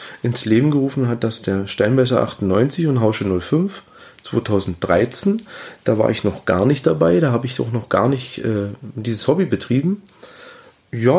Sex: male